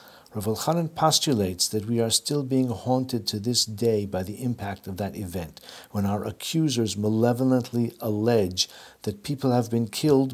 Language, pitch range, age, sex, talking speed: English, 100-125 Hz, 50-69, male, 165 wpm